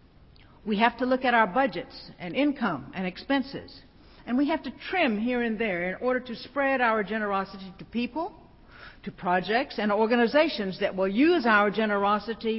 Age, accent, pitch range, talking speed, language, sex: 60-79, American, 185-260 Hz, 170 wpm, English, female